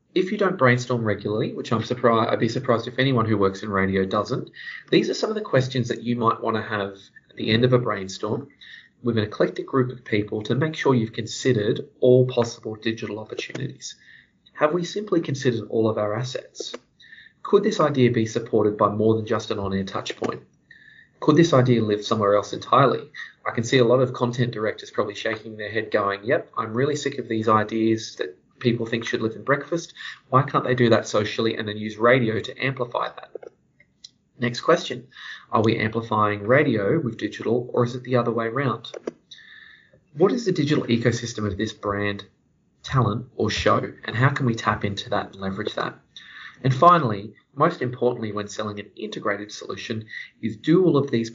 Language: English